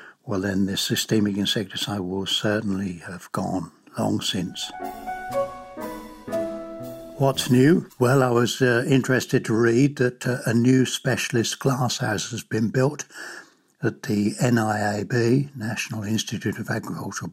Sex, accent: male, British